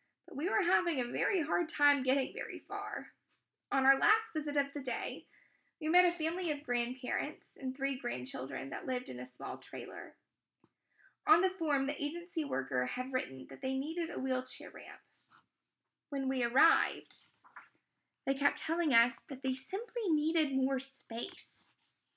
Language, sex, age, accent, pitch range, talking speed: English, female, 10-29, American, 255-325 Hz, 160 wpm